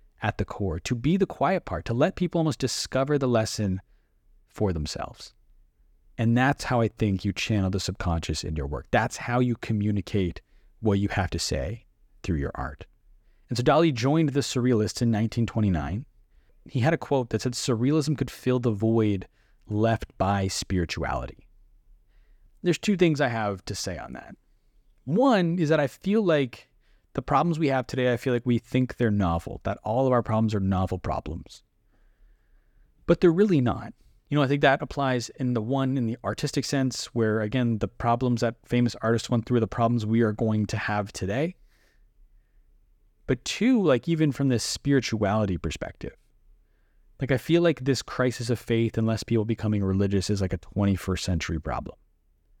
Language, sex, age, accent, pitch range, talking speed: English, male, 30-49, American, 100-130 Hz, 185 wpm